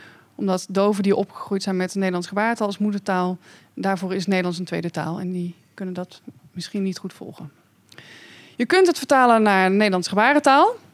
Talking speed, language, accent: 175 wpm, Dutch, Dutch